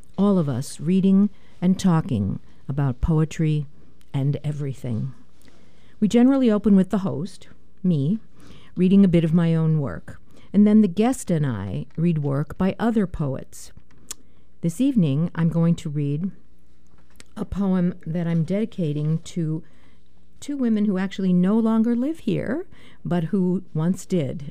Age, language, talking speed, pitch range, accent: 50-69, English, 145 wpm, 150-190 Hz, American